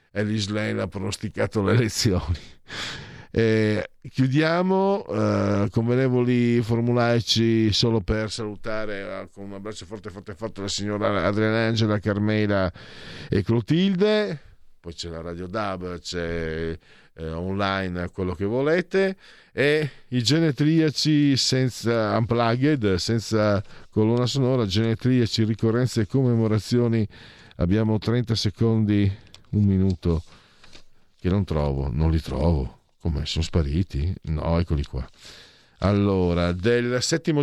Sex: male